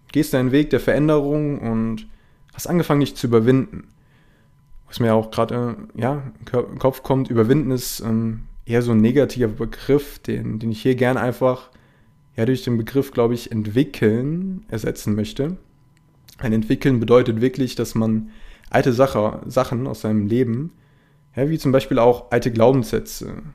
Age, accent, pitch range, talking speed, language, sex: 20-39, German, 110-135 Hz, 160 wpm, German, male